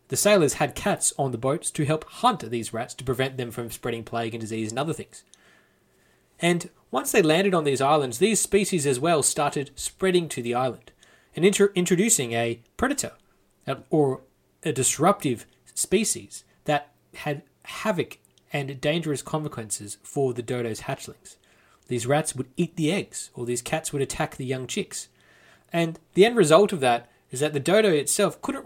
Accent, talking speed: Australian, 175 wpm